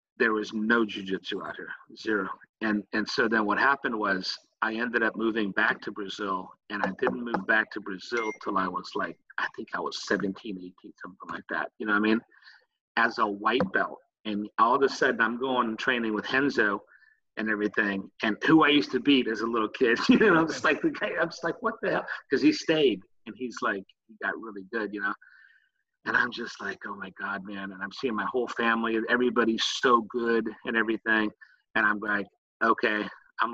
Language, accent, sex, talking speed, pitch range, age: English, American, male, 220 wpm, 100-115 Hz, 40-59